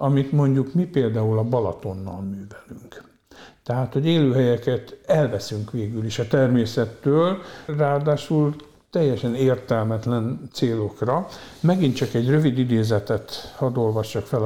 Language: Hungarian